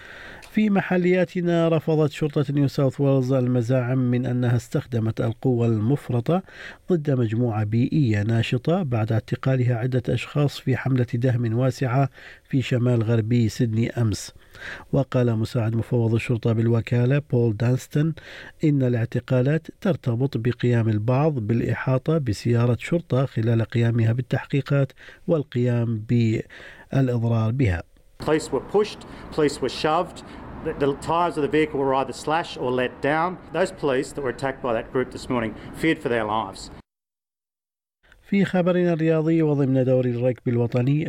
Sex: male